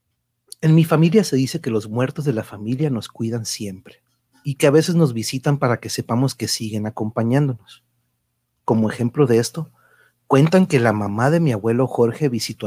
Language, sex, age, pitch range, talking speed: Spanish, male, 40-59, 110-145 Hz, 185 wpm